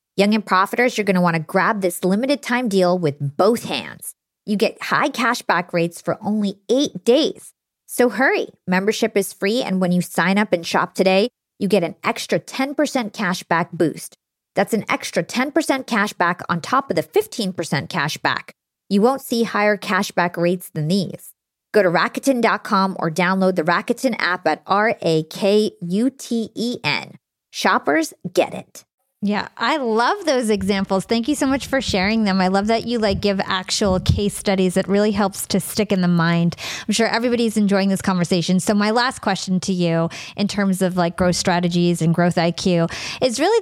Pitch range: 180-230 Hz